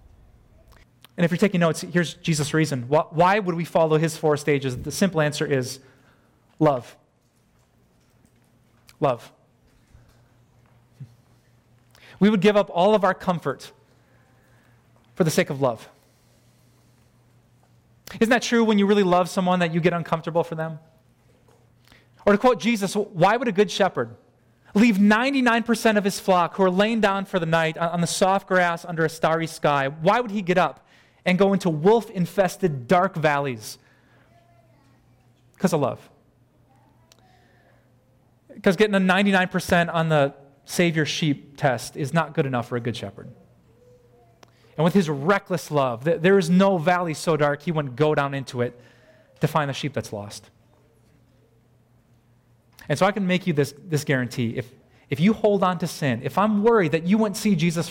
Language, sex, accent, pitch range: English, male, American, 125-180 Hz